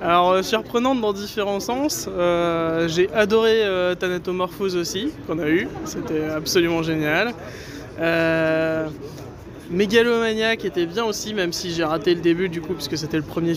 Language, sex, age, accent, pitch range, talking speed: French, male, 20-39, French, 165-195 Hz, 160 wpm